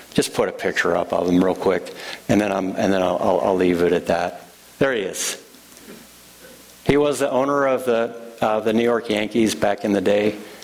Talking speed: 220 wpm